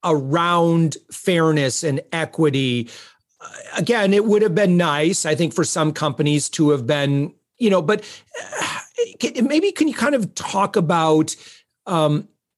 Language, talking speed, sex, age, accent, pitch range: English, 150 wpm, male, 40-59, American, 155-205 Hz